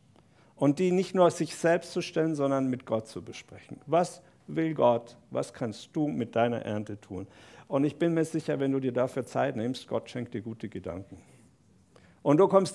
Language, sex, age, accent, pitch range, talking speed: German, male, 50-69, German, 110-140 Hz, 200 wpm